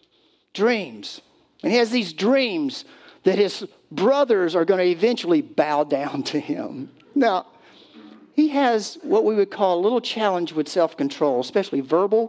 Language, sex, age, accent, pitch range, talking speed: English, male, 50-69, American, 155-230 Hz, 150 wpm